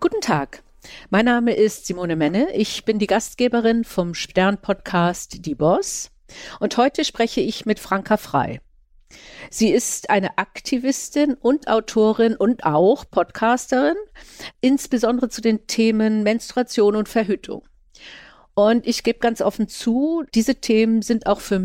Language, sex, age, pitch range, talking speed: German, female, 50-69, 190-240 Hz, 135 wpm